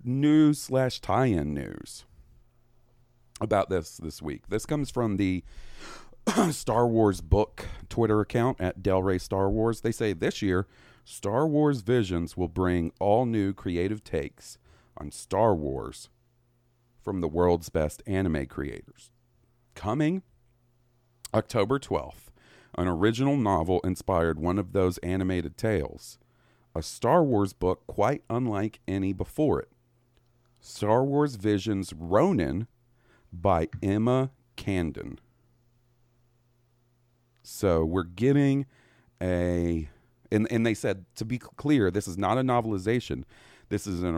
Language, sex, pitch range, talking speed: English, male, 90-120 Hz, 120 wpm